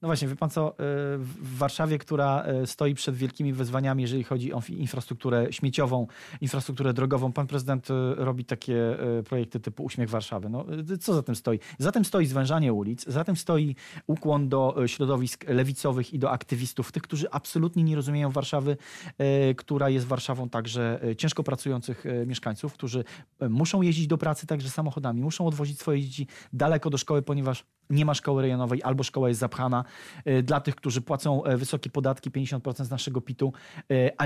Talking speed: 165 wpm